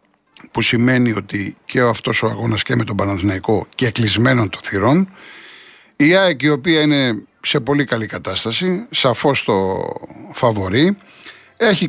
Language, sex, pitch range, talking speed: Greek, male, 110-150 Hz, 135 wpm